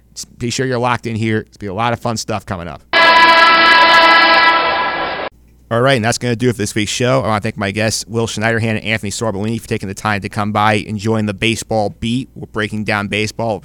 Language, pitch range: English, 100-125 Hz